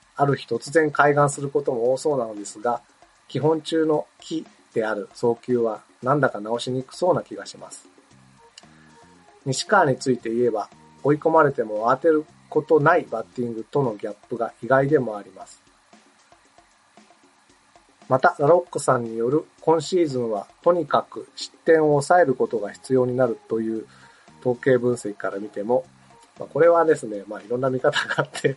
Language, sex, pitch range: Japanese, male, 115-155 Hz